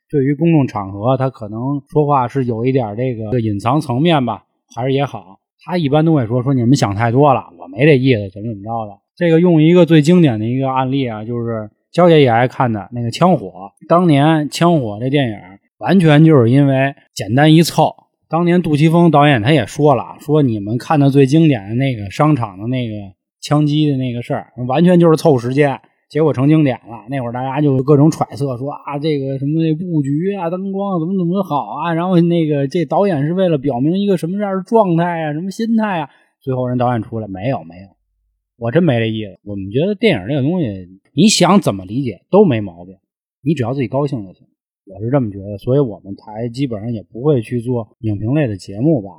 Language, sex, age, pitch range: Chinese, male, 20-39, 115-160 Hz